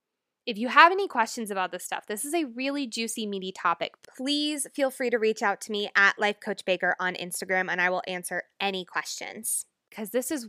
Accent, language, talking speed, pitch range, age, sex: American, English, 215 wpm, 195-260 Hz, 20-39, female